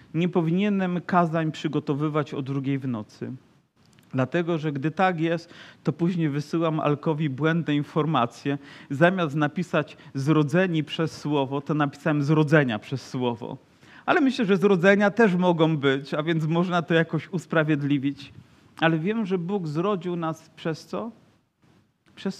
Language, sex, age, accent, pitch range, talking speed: Polish, male, 40-59, native, 150-180 Hz, 135 wpm